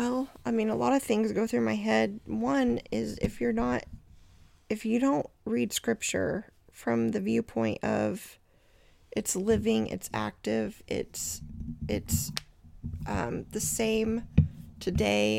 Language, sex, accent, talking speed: English, female, American, 135 wpm